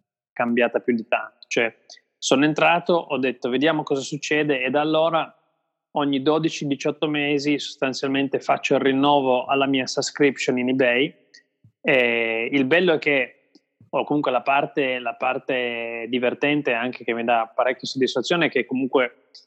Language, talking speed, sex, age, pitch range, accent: Italian, 140 wpm, male, 20-39, 120-145 Hz, native